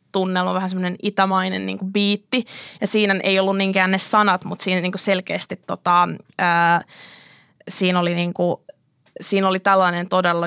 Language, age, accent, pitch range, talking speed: Finnish, 20-39, native, 180-195 Hz, 165 wpm